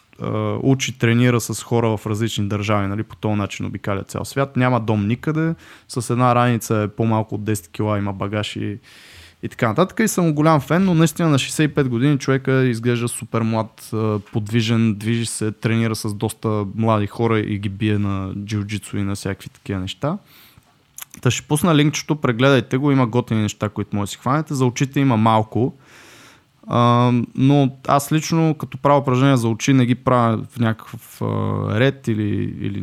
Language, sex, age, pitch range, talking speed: Bulgarian, male, 20-39, 110-135 Hz, 180 wpm